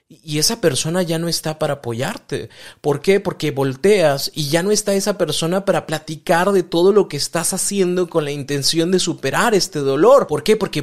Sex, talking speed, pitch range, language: male, 200 wpm, 145-195 Hz, Spanish